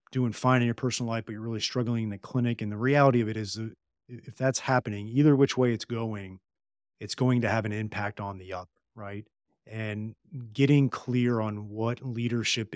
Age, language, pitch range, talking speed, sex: 30-49, English, 105-125 Hz, 200 wpm, male